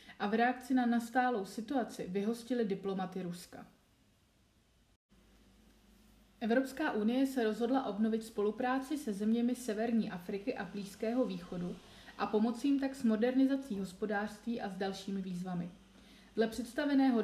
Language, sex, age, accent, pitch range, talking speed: Czech, female, 30-49, native, 200-245 Hz, 120 wpm